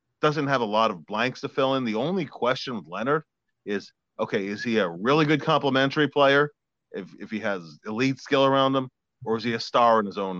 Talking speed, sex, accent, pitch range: 225 wpm, male, American, 105-135 Hz